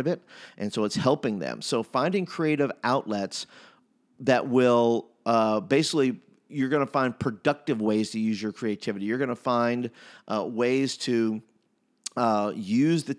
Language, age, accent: English, 40-59, American